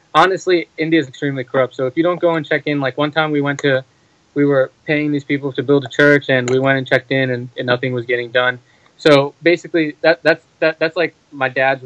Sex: male